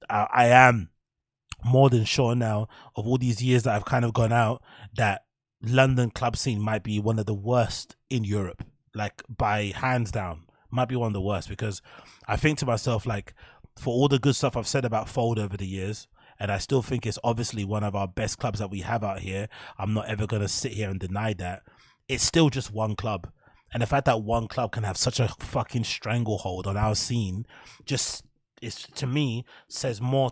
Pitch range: 105-125 Hz